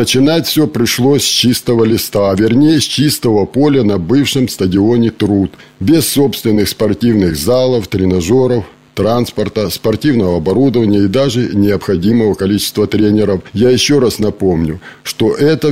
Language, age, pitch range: Russian, 50-69, 105-135 Hz